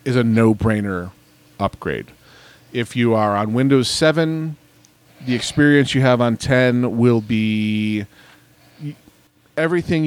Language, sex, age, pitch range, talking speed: English, male, 40-59, 105-135 Hz, 115 wpm